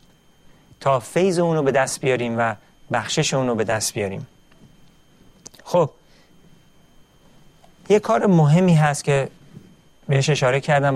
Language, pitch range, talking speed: Persian, 120-155 Hz, 115 wpm